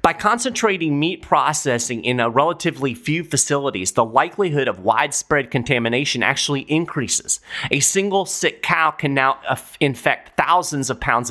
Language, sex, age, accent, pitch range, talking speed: English, male, 30-49, American, 120-150 Hz, 140 wpm